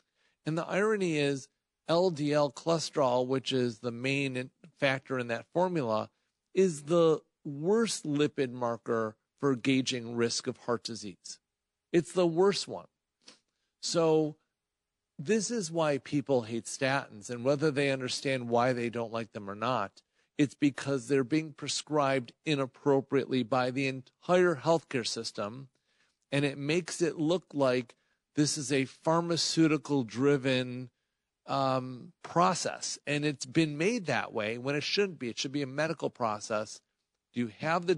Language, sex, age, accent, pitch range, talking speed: English, male, 50-69, American, 125-150 Hz, 140 wpm